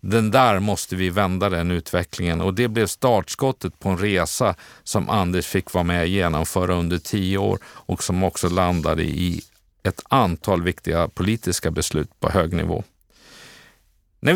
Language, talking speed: Swedish, 160 wpm